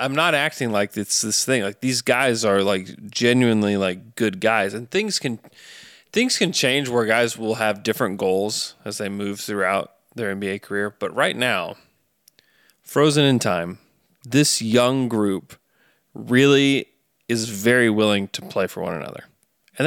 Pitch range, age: 100-130 Hz, 20-39